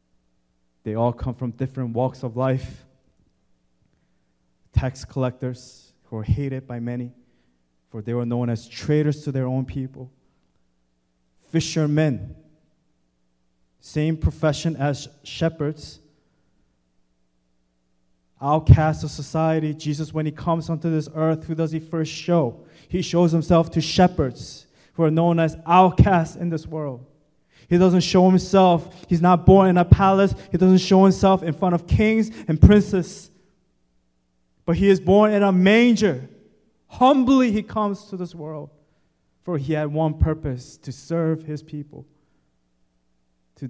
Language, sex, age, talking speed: English, male, 20-39, 140 wpm